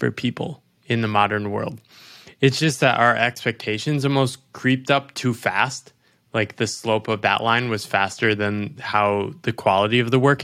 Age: 20-39